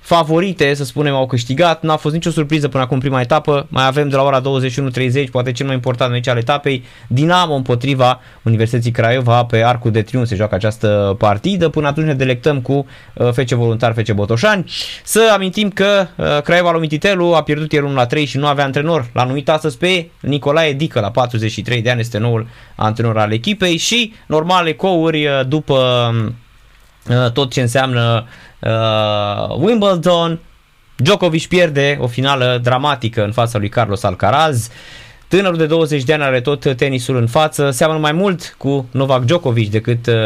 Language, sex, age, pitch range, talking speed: Romanian, male, 20-39, 120-155 Hz, 170 wpm